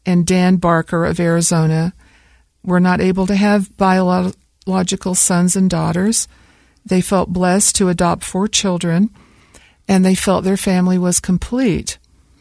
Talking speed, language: 135 wpm, English